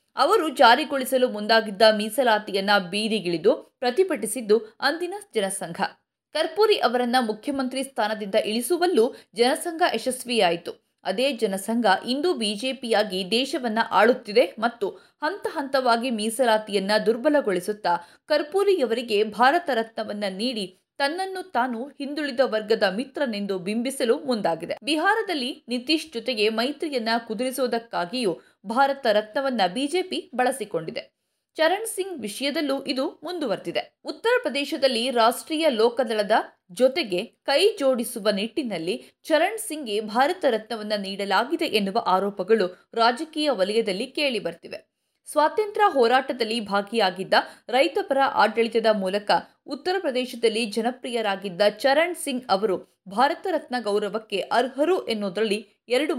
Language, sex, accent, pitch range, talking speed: Kannada, female, native, 215-290 Hz, 95 wpm